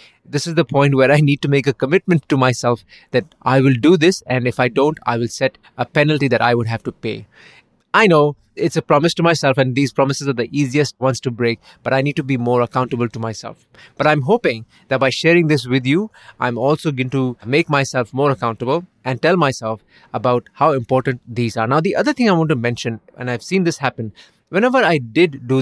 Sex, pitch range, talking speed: male, 125-160 Hz, 235 wpm